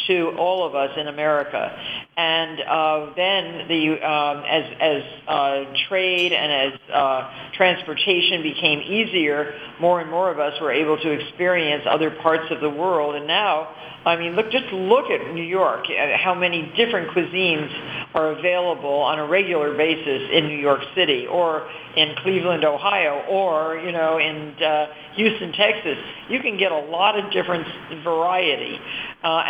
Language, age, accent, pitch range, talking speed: English, 50-69, American, 150-180 Hz, 160 wpm